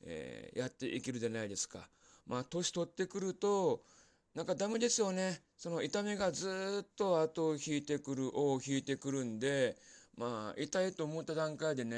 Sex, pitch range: male, 115-155 Hz